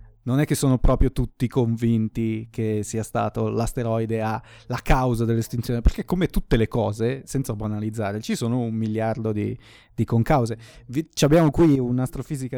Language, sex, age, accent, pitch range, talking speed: Italian, male, 20-39, native, 115-140 Hz, 155 wpm